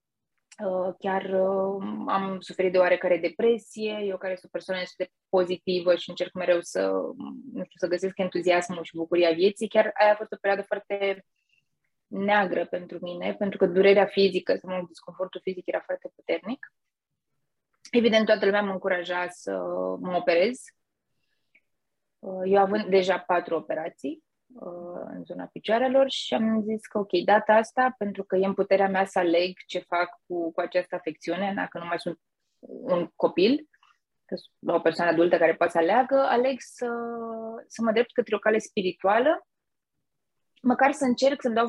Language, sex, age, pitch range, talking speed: Romanian, female, 20-39, 180-225 Hz, 160 wpm